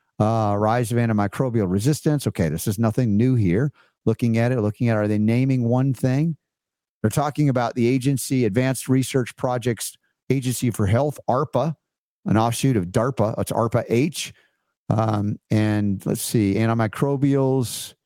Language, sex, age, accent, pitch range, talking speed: English, male, 50-69, American, 110-140 Hz, 145 wpm